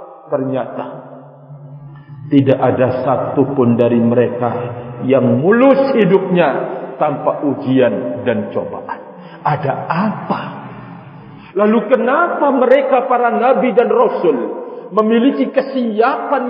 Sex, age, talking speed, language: male, 50-69, 90 wpm, Indonesian